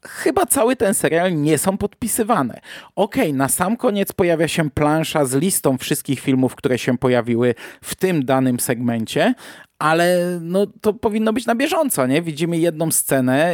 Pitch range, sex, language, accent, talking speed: 135-190 Hz, male, Polish, native, 165 wpm